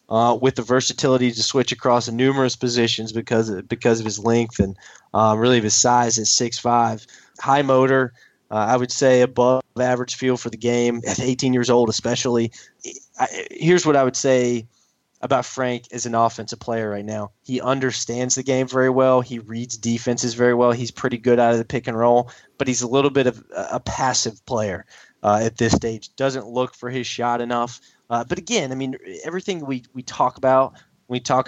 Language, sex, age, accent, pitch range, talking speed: English, male, 20-39, American, 115-130 Hz, 200 wpm